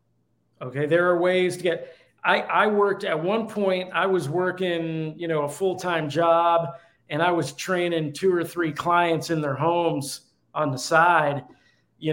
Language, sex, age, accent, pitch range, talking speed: English, male, 40-59, American, 145-180 Hz, 180 wpm